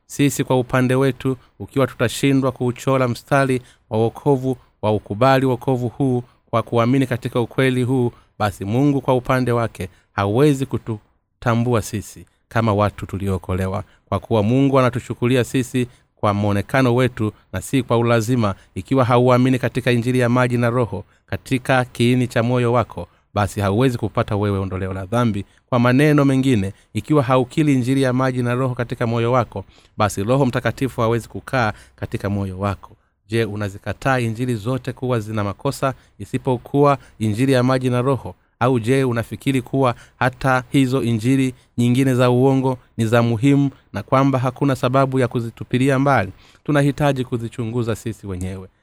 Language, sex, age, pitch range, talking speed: Swahili, male, 30-49, 110-130 Hz, 145 wpm